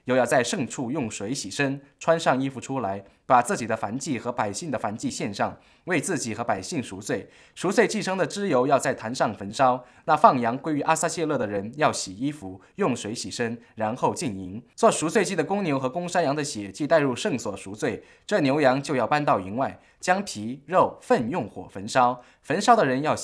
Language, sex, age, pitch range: English, male, 20-39, 110-160 Hz